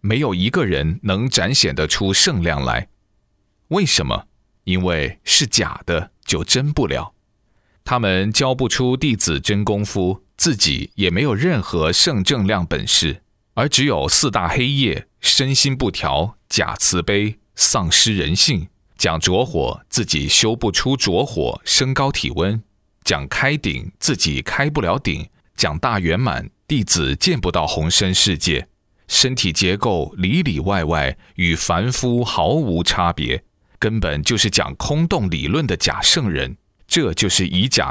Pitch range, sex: 90-120 Hz, male